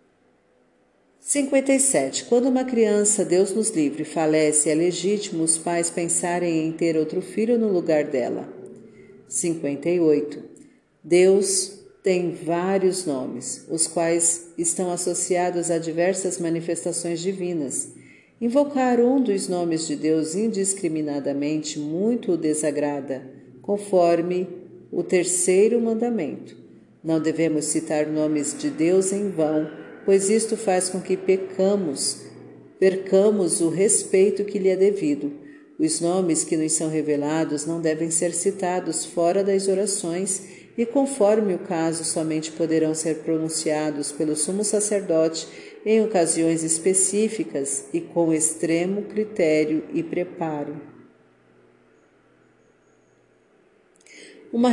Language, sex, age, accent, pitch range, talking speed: Portuguese, female, 50-69, Brazilian, 160-195 Hz, 110 wpm